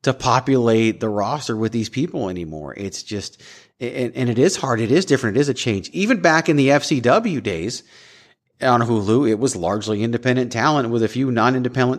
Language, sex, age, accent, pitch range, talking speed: English, male, 30-49, American, 120-150 Hz, 195 wpm